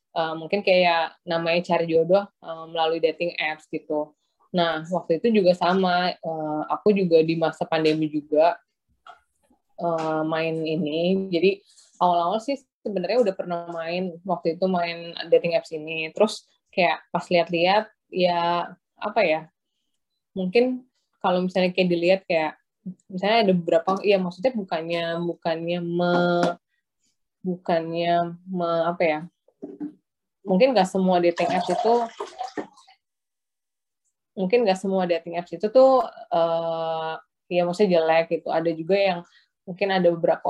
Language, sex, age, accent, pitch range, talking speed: Indonesian, female, 20-39, native, 165-195 Hz, 130 wpm